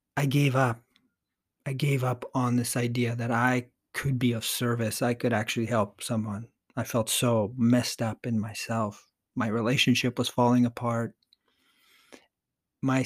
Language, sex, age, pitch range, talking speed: English, male, 40-59, 115-130 Hz, 150 wpm